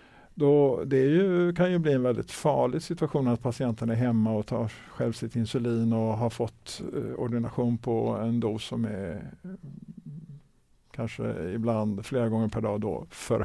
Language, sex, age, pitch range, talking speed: Swedish, male, 50-69, 115-150 Hz, 170 wpm